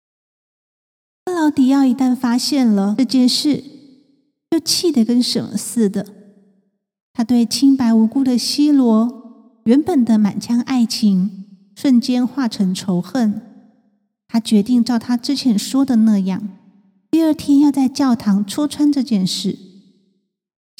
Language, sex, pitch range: Chinese, female, 215-270 Hz